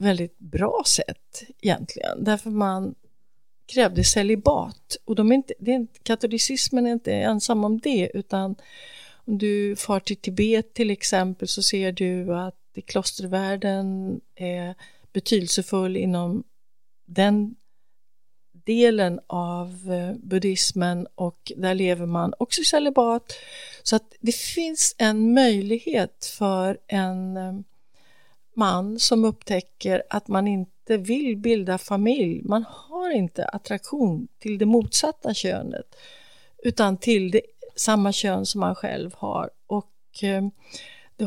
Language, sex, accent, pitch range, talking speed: English, female, Swedish, 185-230 Hz, 120 wpm